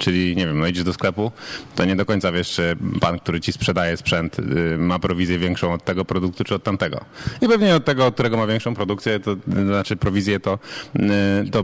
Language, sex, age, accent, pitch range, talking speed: Polish, male, 30-49, native, 100-130 Hz, 215 wpm